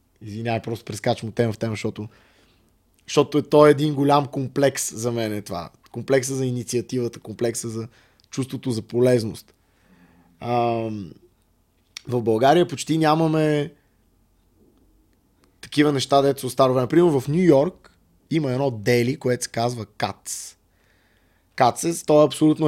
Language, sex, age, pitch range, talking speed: Bulgarian, male, 20-39, 105-140 Hz, 135 wpm